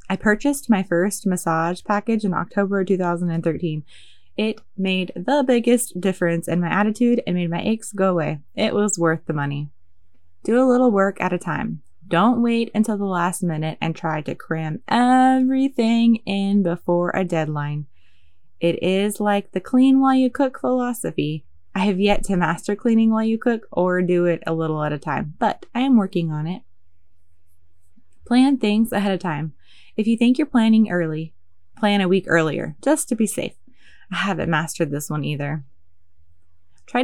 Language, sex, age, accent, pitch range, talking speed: English, female, 20-39, American, 155-215 Hz, 175 wpm